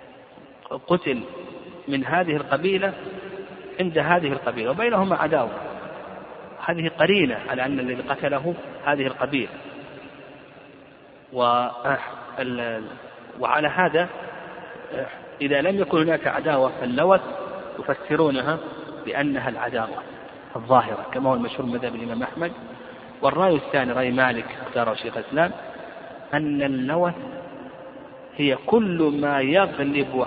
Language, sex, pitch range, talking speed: Arabic, male, 130-175 Hz, 95 wpm